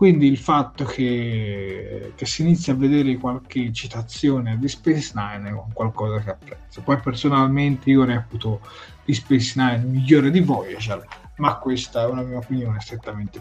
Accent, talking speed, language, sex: native, 160 wpm, Italian, male